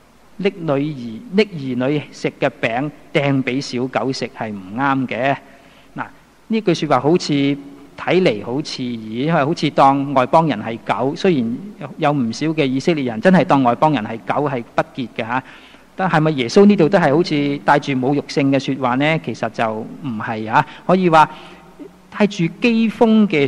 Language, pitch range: Chinese, 130-170 Hz